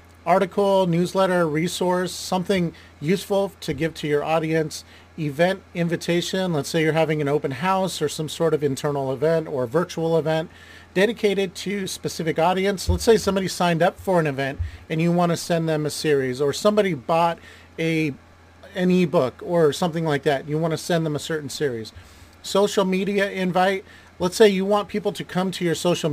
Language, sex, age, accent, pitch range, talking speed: English, male, 40-59, American, 145-185 Hz, 180 wpm